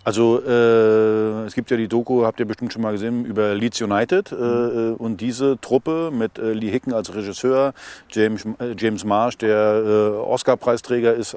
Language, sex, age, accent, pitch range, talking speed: German, male, 40-59, German, 105-120 Hz, 180 wpm